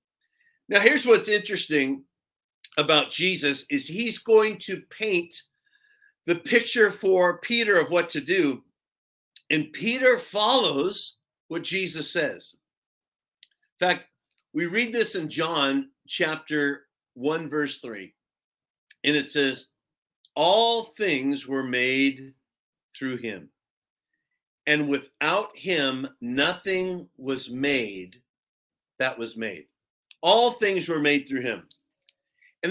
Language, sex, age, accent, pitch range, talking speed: English, male, 50-69, American, 145-220 Hz, 110 wpm